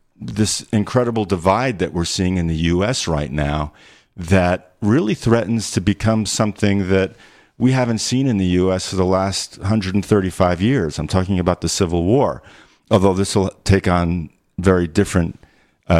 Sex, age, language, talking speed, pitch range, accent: male, 50-69, English, 170 wpm, 85-115 Hz, American